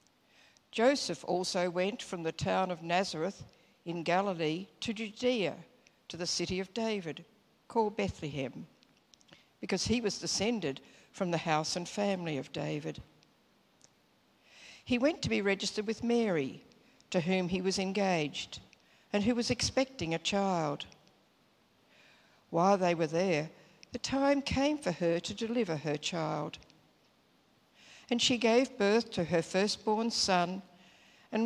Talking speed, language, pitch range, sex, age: 135 wpm, English, 175-230 Hz, female, 60-79